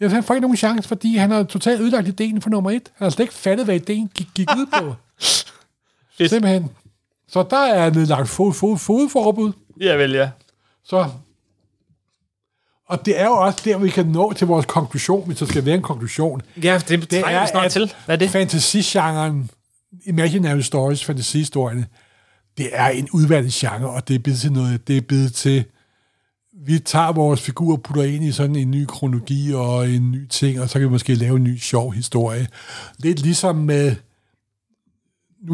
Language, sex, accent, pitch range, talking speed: Danish, male, native, 125-175 Hz, 190 wpm